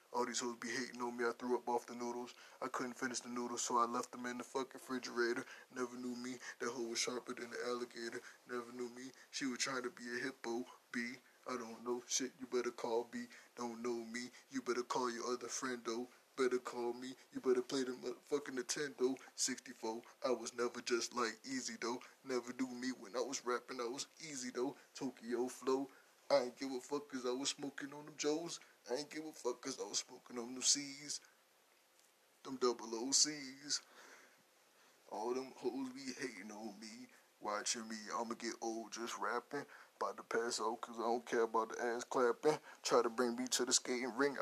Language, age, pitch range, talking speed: English, 20-39, 120-135 Hz, 210 wpm